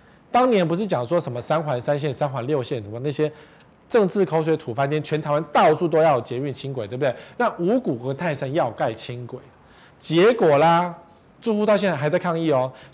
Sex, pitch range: male, 130-175 Hz